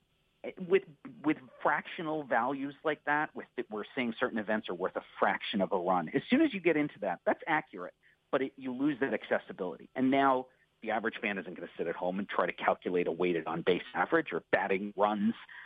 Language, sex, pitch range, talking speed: English, male, 110-150 Hz, 220 wpm